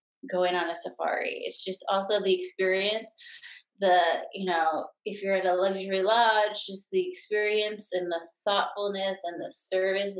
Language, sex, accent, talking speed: English, female, American, 160 wpm